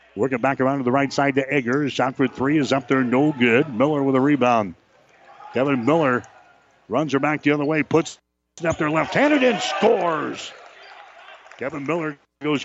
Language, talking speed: English, 185 wpm